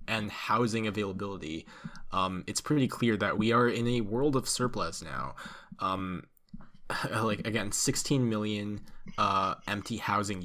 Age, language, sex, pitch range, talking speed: 10-29, English, male, 100-125 Hz, 140 wpm